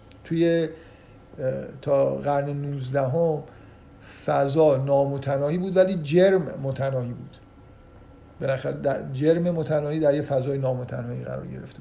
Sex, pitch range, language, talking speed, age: male, 135-170 Hz, Persian, 95 wpm, 50-69